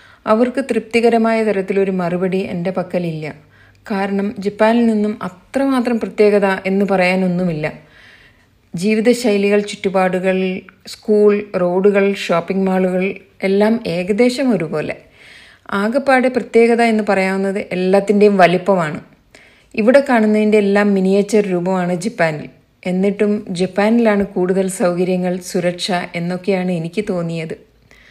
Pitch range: 180-210 Hz